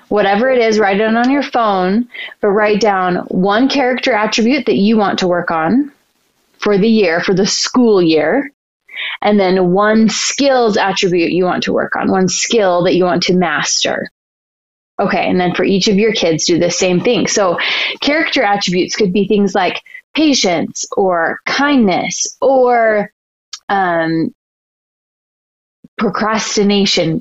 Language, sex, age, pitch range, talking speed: English, female, 20-39, 185-225 Hz, 155 wpm